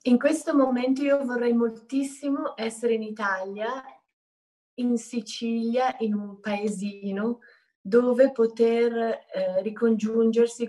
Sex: female